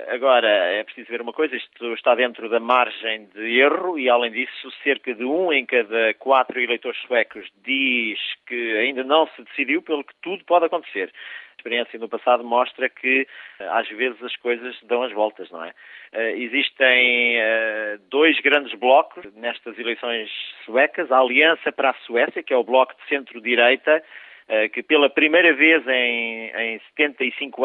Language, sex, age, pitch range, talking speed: Portuguese, male, 40-59, 120-150 Hz, 165 wpm